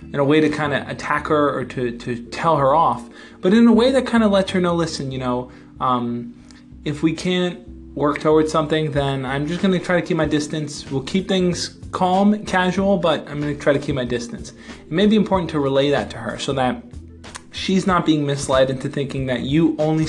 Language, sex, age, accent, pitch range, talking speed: English, male, 20-39, American, 130-160 Hz, 235 wpm